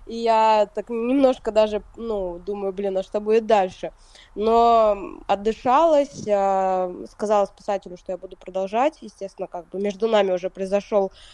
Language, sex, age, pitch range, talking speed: Russian, female, 20-39, 190-230 Hz, 150 wpm